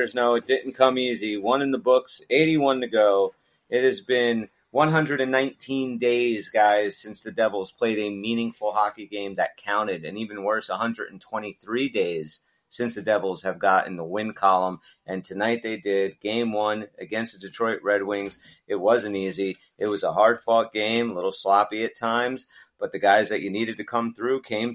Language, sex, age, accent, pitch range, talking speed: English, male, 40-59, American, 100-125 Hz, 180 wpm